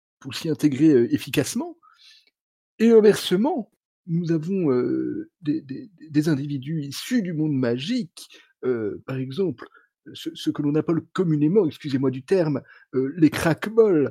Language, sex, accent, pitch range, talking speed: French, male, French, 150-230 Hz, 140 wpm